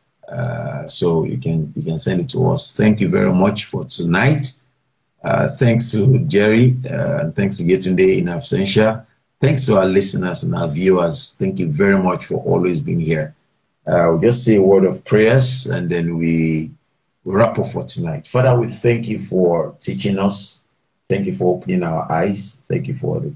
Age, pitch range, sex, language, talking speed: 50-69, 95-145 Hz, male, English, 190 wpm